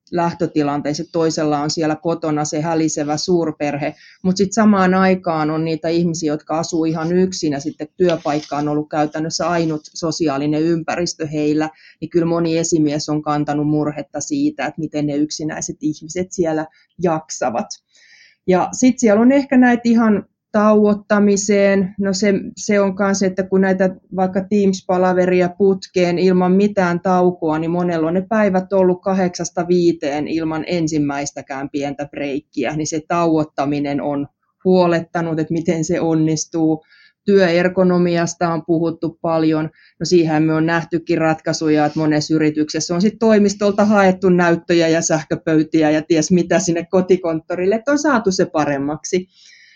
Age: 30-49